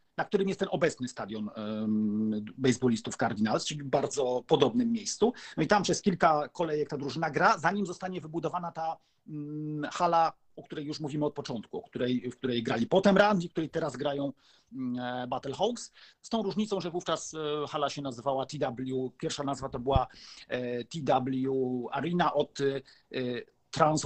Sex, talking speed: male, 150 wpm